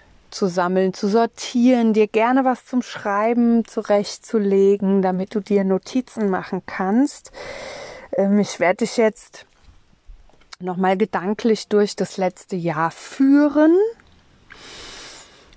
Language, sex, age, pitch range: German, female, 30-49, 185-225 Hz